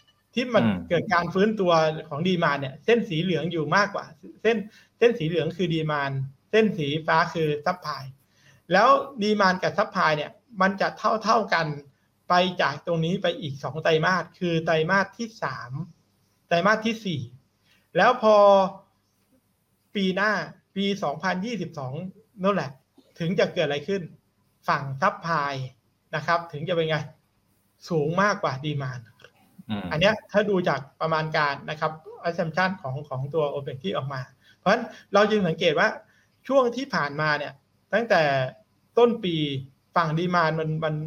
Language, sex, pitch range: Thai, male, 145-195 Hz